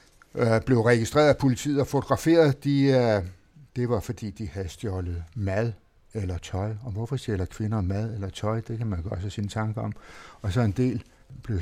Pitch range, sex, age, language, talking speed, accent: 100-125 Hz, male, 60-79, Danish, 190 wpm, native